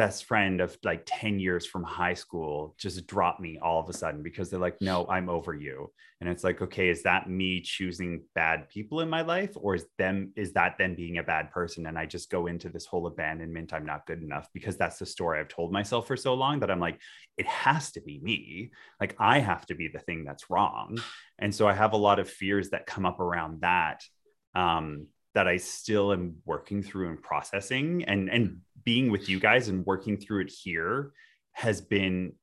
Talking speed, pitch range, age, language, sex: 220 wpm, 85-105 Hz, 20-39, English, male